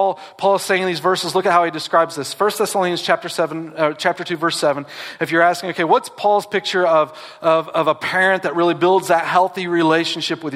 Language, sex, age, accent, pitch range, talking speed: English, male, 40-59, American, 135-170 Hz, 225 wpm